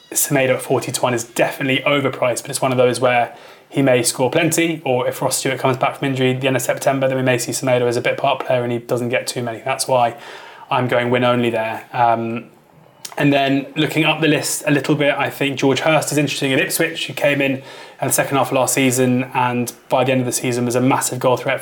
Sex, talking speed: male, 260 wpm